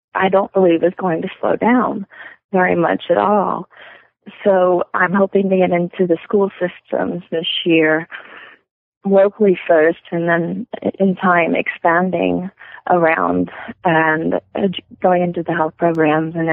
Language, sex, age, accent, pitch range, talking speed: English, female, 30-49, American, 165-195 Hz, 140 wpm